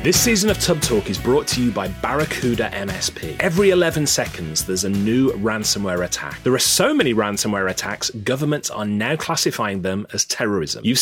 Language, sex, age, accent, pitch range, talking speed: English, male, 30-49, British, 105-155 Hz, 185 wpm